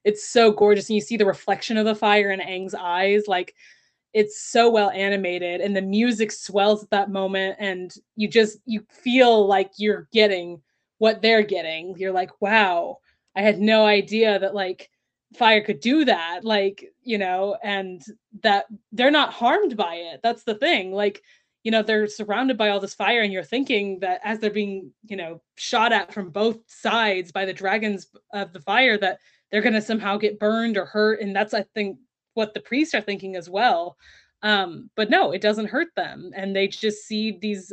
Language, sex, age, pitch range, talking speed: English, female, 20-39, 195-220 Hz, 195 wpm